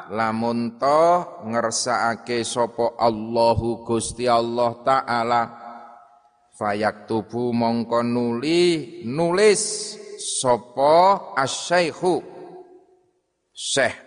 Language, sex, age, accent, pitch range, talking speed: Indonesian, male, 30-49, native, 115-125 Hz, 65 wpm